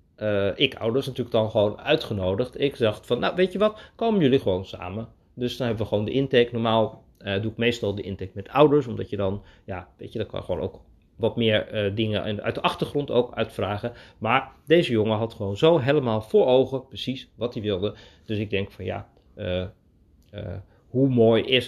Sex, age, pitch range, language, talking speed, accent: male, 40-59, 100-125 Hz, Dutch, 215 wpm, Dutch